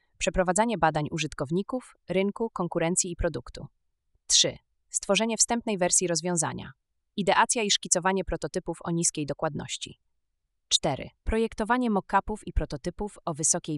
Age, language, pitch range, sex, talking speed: 30-49, Polish, 145-190 Hz, female, 115 wpm